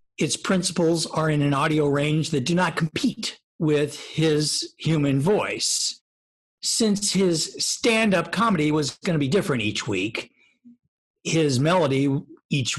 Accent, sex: American, male